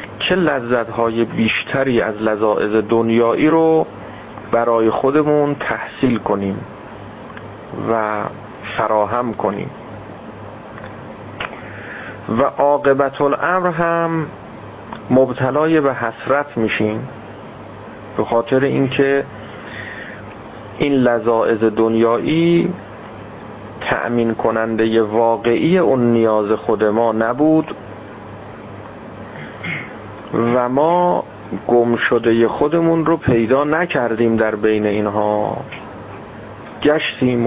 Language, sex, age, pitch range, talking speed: Persian, male, 40-59, 105-125 Hz, 80 wpm